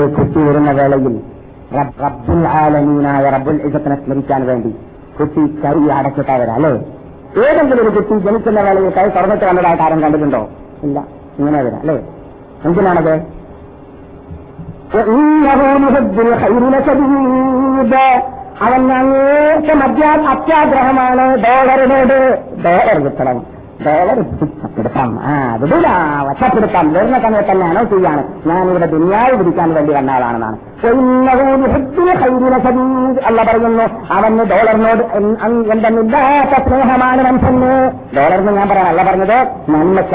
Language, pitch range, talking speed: Malayalam, 155-260 Hz, 60 wpm